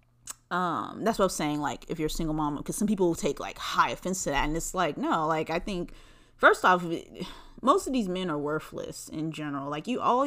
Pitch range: 150-185 Hz